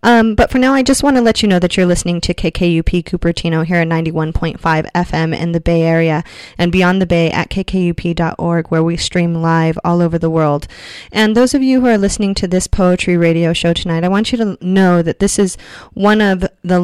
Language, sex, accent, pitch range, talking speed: English, female, American, 170-195 Hz, 225 wpm